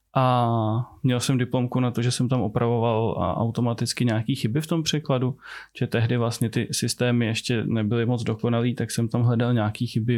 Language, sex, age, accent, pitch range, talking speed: Czech, male, 20-39, native, 110-125 Hz, 185 wpm